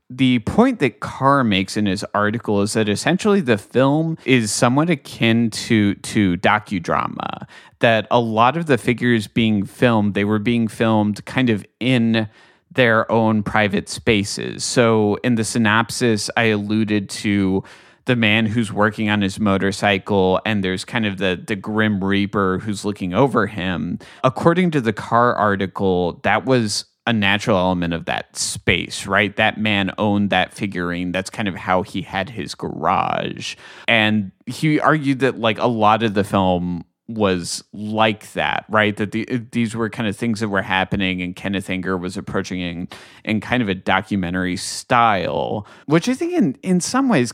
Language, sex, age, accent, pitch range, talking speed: English, male, 30-49, American, 100-120 Hz, 170 wpm